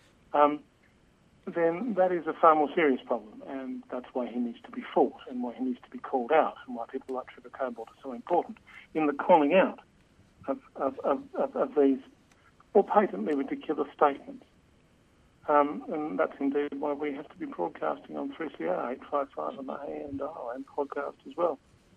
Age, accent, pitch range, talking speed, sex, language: 60-79, British, 120-145 Hz, 185 wpm, male, English